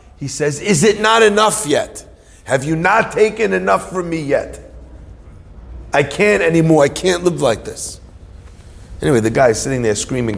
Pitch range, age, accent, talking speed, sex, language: 95-145 Hz, 40-59, American, 170 wpm, male, English